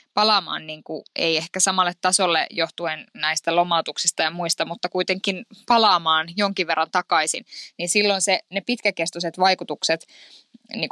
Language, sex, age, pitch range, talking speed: Finnish, female, 20-39, 170-200 Hz, 135 wpm